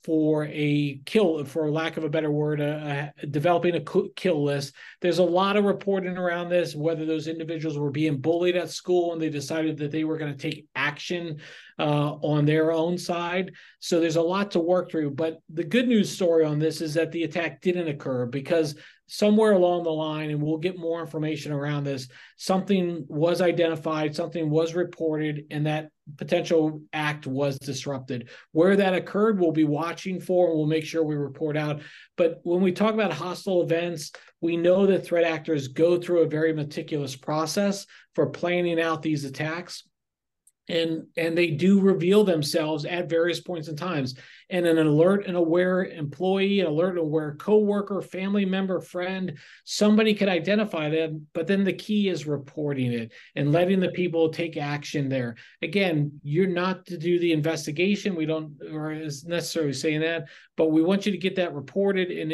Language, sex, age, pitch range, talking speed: English, male, 40-59, 155-180 Hz, 180 wpm